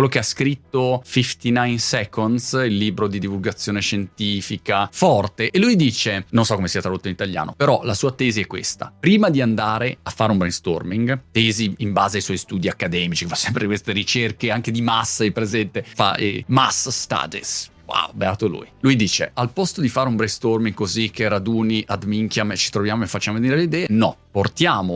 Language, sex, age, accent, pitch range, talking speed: Italian, male, 30-49, native, 105-140 Hz, 190 wpm